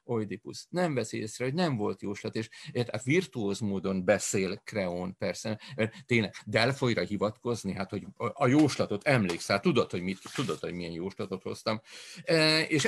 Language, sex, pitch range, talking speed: Hungarian, male, 100-125 Hz, 160 wpm